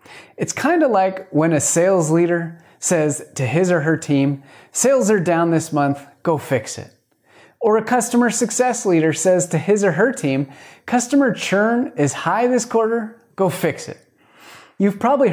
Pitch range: 150-225 Hz